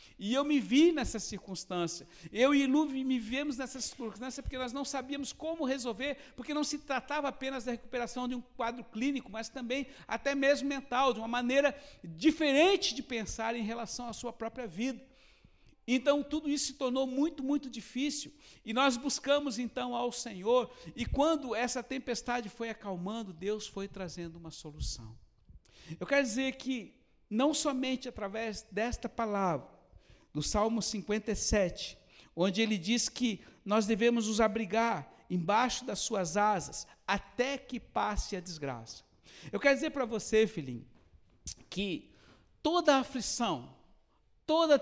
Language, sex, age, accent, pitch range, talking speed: Portuguese, male, 60-79, Brazilian, 205-270 Hz, 150 wpm